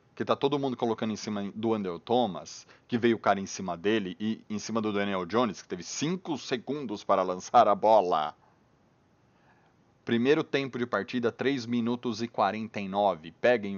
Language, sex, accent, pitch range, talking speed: Portuguese, male, Brazilian, 100-125 Hz, 170 wpm